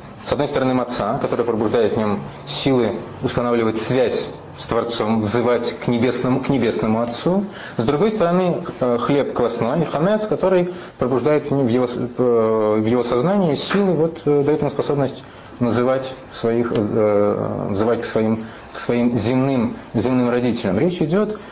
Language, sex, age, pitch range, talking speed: Russian, male, 30-49, 115-150 Hz, 140 wpm